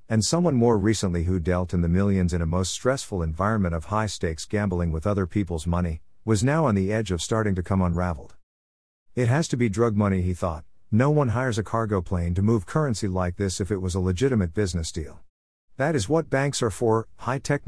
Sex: male